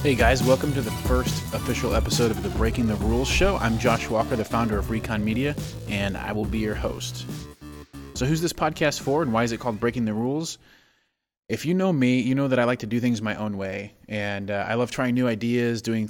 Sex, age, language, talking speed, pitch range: male, 30-49, English, 240 wpm, 105-125 Hz